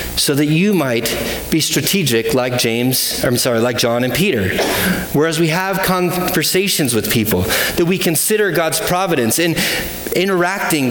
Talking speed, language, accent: 150 wpm, English, American